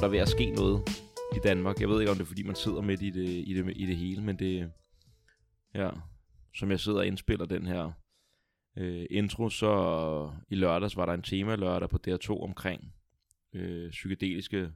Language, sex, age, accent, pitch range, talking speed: Danish, male, 20-39, native, 90-105 Hz, 205 wpm